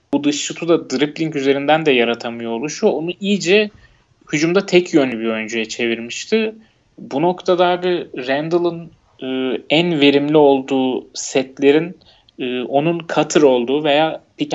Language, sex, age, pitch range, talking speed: Turkish, male, 30-49, 120-150 Hz, 135 wpm